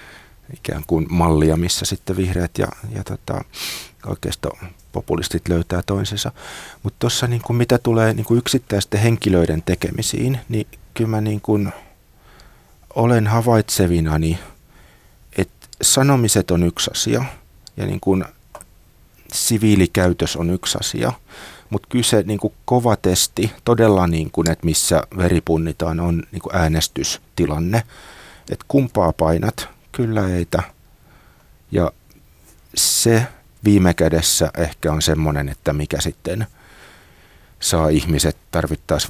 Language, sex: Finnish, male